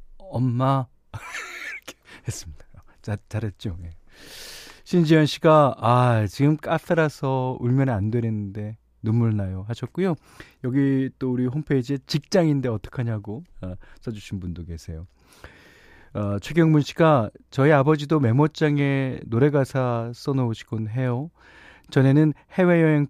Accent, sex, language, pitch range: native, male, Korean, 100-140 Hz